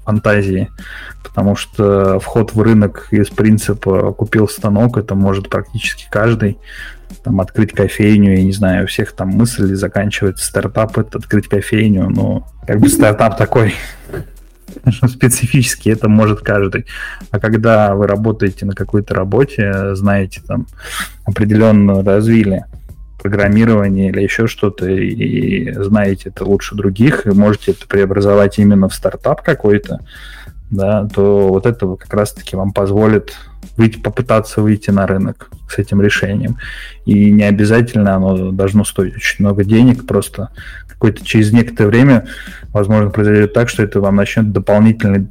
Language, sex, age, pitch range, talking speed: Russian, male, 20-39, 100-110 Hz, 140 wpm